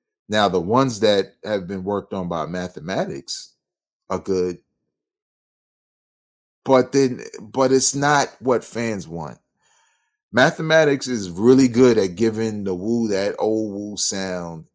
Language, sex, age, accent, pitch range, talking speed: English, male, 30-49, American, 95-130 Hz, 130 wpm